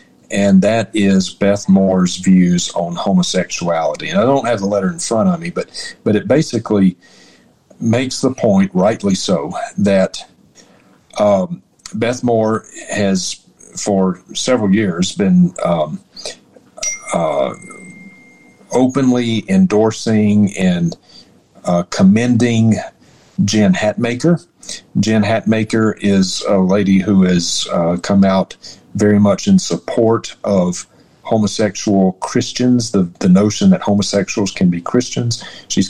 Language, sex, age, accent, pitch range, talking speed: English, male, 50-69, American, 95-120 Hz, 120 wpm